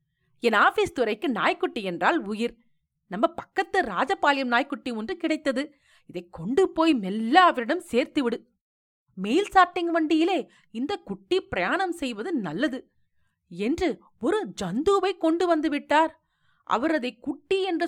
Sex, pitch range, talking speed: female, 235-340 Hz, 120 wpm